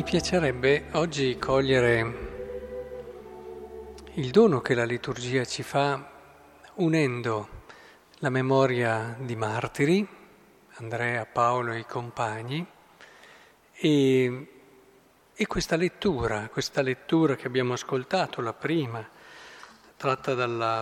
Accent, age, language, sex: native, 50-69, Italian, male